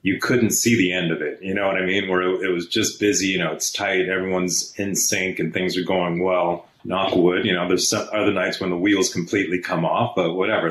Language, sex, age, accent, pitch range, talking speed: English, male, 30-49, American, 90-110 Hz, 260 wpm